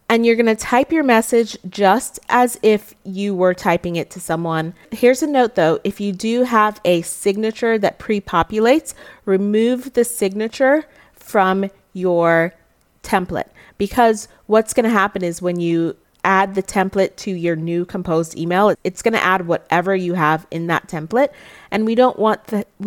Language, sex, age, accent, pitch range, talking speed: English, female, 30-49, American, 175-225 Hz, 165 wpm